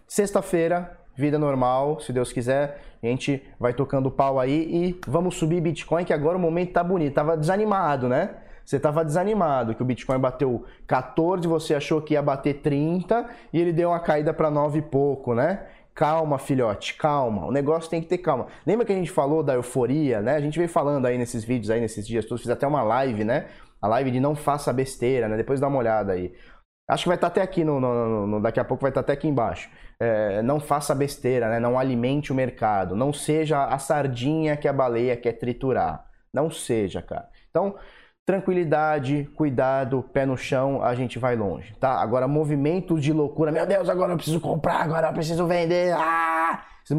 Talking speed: 205 wpm